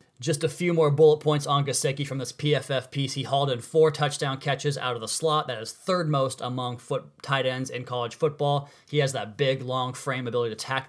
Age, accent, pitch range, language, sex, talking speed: 20-39, American, 120-145 Hz, English, male, 230 wpm